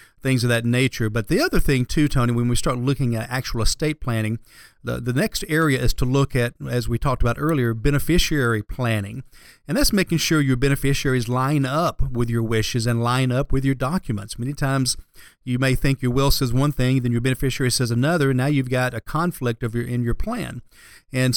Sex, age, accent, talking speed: male, 40-59, American, 215 wpm